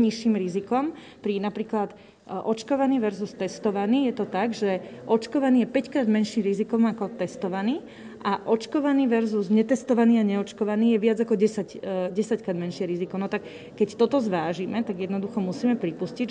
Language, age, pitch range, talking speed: Slovak, 30-49, 195-230 Hz, 150 wpm